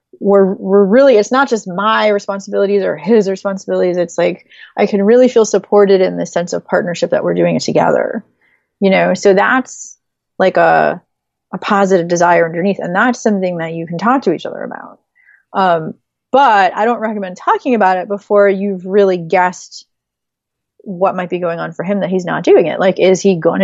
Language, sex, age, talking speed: English, female, 30-49, 195 wpm